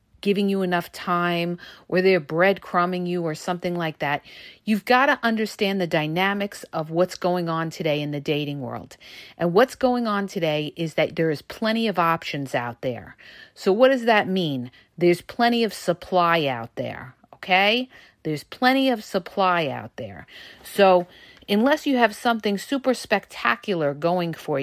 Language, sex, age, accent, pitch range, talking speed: English, female, 40-59, American, 170-255 Hz, 165 wpm